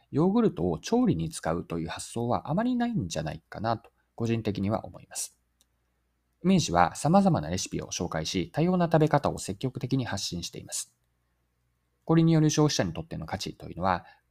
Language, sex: Japanese, male